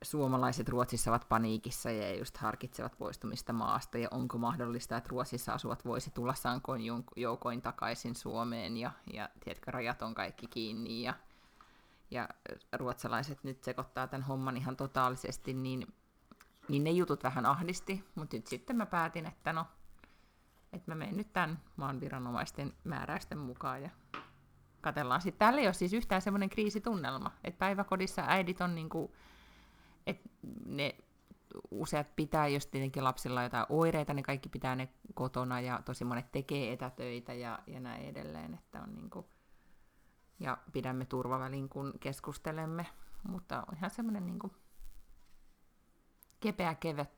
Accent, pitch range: native, 125-180 Hz